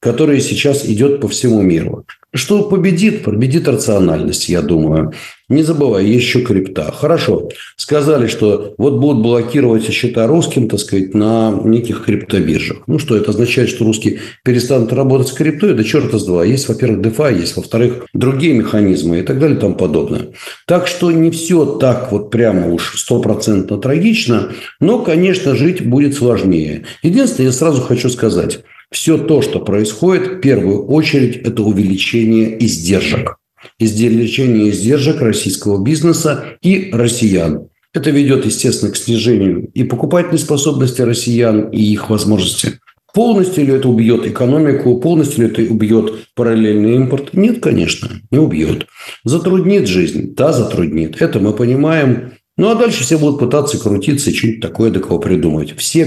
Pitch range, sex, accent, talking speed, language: 105-150 Hz, male, native, 145 wpm, Russian